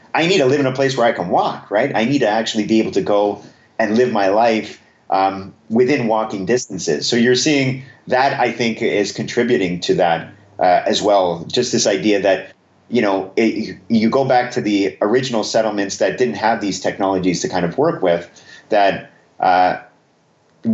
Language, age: English, 30-49